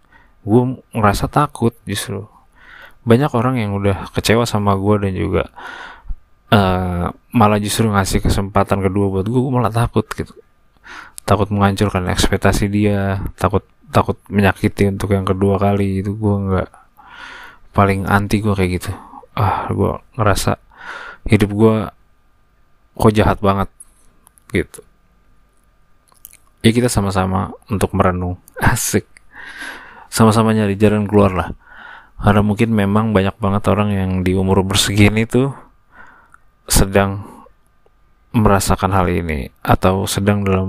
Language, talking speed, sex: Indonesian, 120 wpm, male